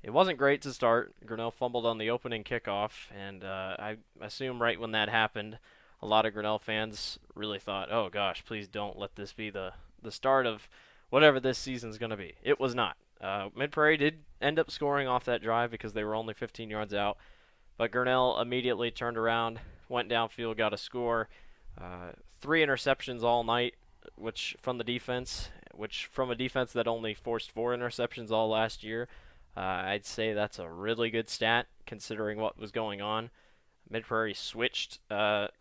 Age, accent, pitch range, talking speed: 10-29, American, 110-125 Hz, 185 wpm